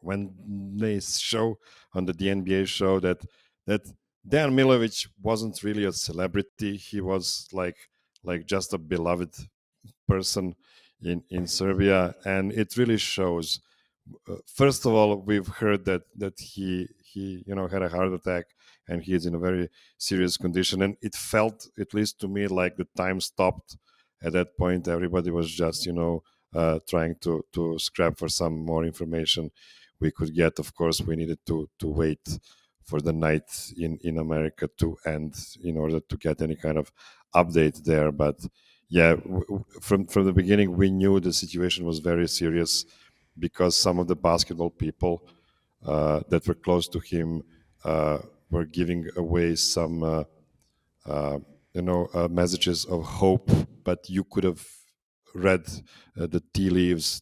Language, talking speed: English, 165 wpm